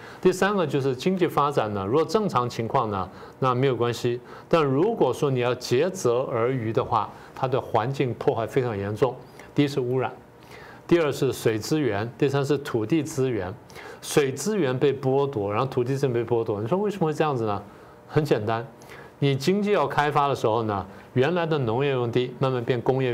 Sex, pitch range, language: male, 120-155 Hz, Chinese